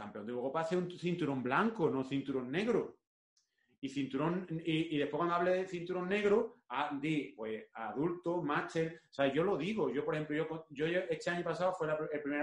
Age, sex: 30-49, male